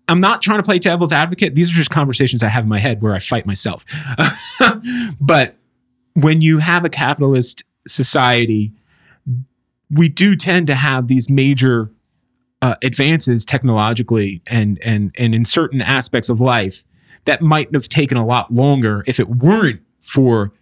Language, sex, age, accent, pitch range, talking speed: English, male, 30-49, American, 115-145 Hz, 165 wpm